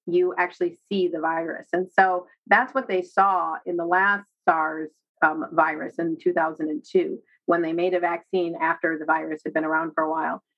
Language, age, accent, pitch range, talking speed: English, 40-59, American, 175-225 Hz, 185 wpm